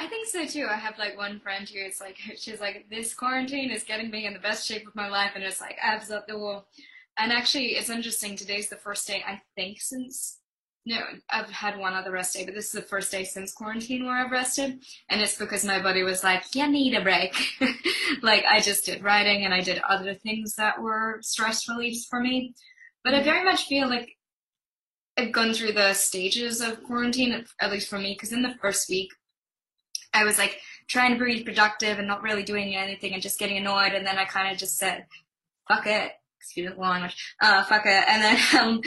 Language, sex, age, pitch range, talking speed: English, female, 10-29, 195-235 Hz, 225 wpm